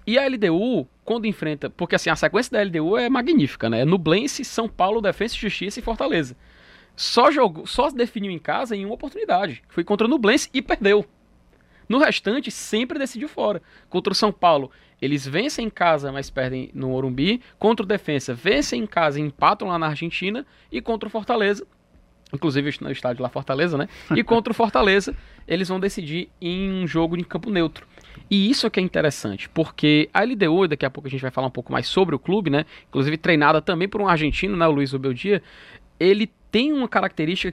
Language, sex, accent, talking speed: Portuguese, male, Brazilian, 195 wpm